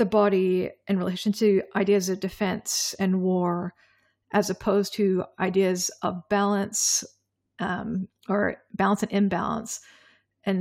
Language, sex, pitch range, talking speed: English, female, 185-215 Hz, 125 wpm